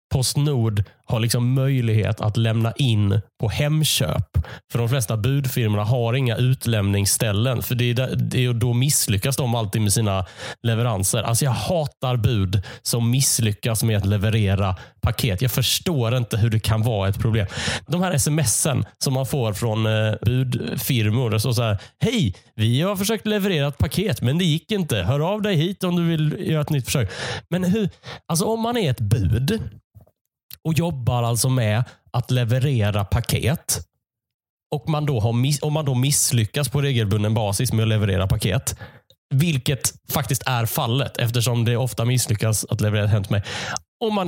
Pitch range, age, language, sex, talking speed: 110-140 Hz, 30-49, Swedish, male, 160 wpm